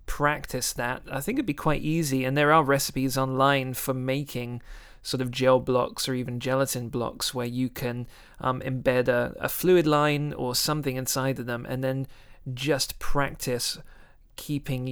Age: 30-49